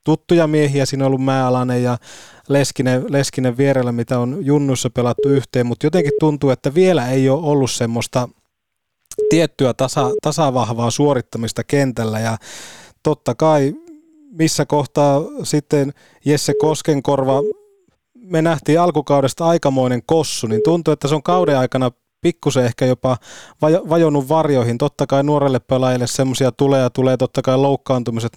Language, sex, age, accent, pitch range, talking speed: Finnish, male, 20-39, native, 125-145 Hz, 135 wpm